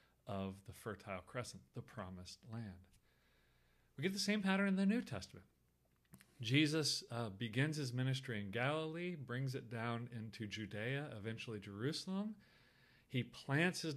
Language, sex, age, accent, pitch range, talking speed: English, male, 40-59, American, 105-145 Hz, 140 wpm